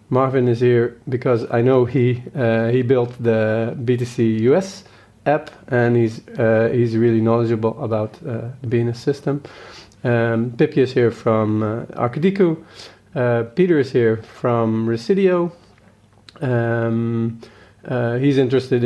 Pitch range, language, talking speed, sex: 115-135 Hz, English, 135 wpm, male